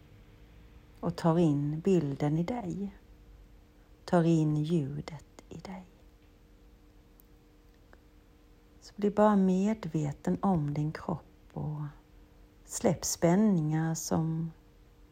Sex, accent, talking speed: female, native, 85 wpm